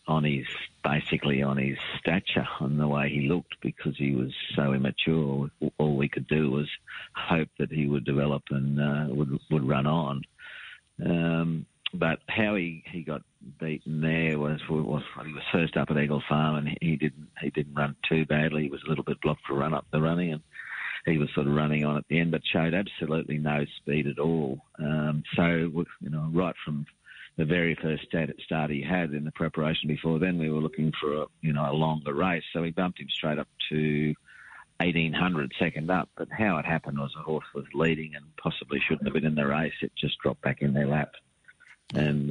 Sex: male